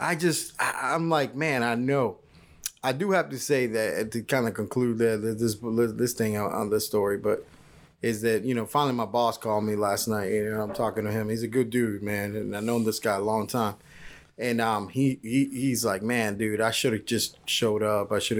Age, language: 20-39, English